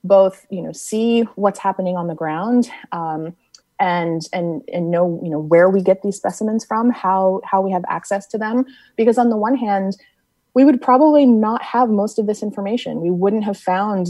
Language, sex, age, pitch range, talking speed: English, female, 30-49, 170-215 Hz, 200 wpm